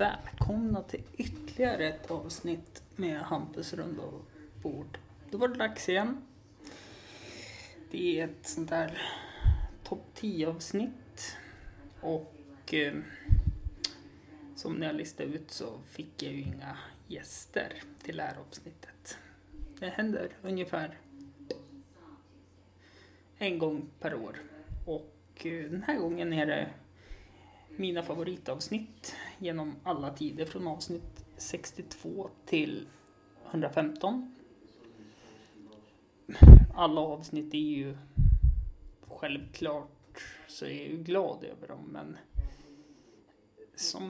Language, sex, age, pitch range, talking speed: Swedish, male, 20-39, 140-200 Hz, 100 wpm